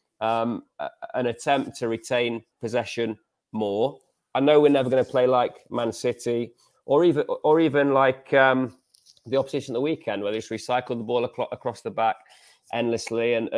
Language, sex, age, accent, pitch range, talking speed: English, male, 30-49, British, 115-130 Hz, 170 wpm